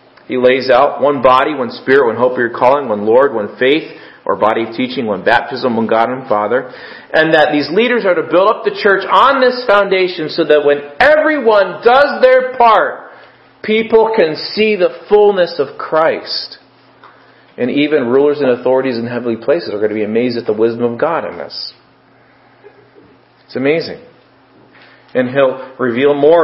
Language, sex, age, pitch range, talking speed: English, male, 40-59, 130-195 Hz, 175 wpm